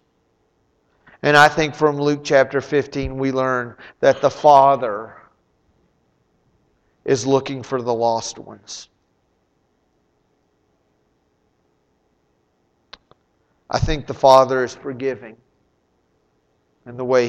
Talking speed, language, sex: 95 wpm, English, male